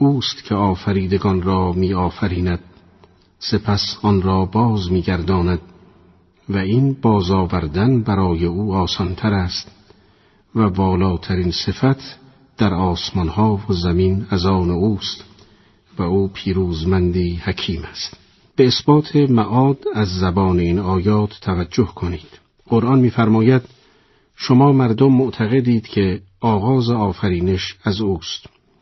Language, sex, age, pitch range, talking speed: Persian, male, 50-69, 90-110 Hz, 110 wpm